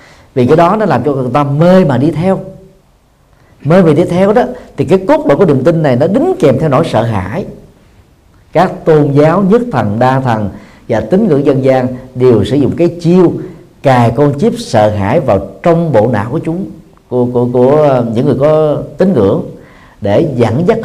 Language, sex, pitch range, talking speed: Vietnamese, male, 115-165 Hz, 205 wpm